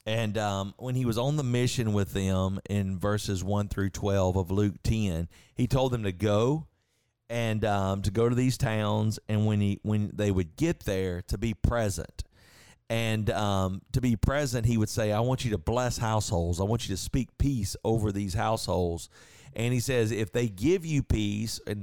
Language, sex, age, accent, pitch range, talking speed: English, male, 40-59, American, 100-120 Hz, 200 wpm